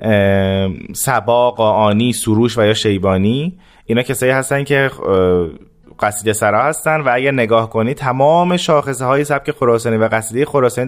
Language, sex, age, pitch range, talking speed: Persian, male, 30-49, 105-145 Hz, 130 wpm